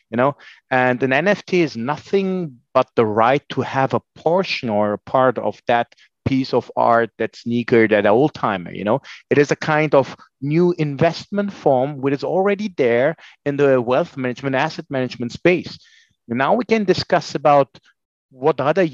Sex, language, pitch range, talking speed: male, English, 115-140 Hz, 175 wpm